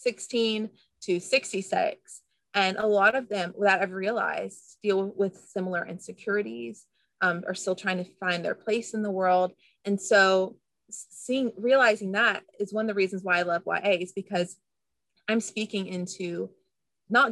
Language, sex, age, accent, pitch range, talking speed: English, female, 30-49, American, 180-210 Hz, 160 wpm